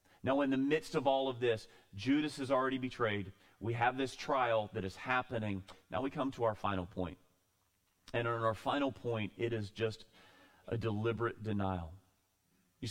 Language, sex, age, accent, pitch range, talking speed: English, male, 40-59, American, 95-135 Hz, 175 wpm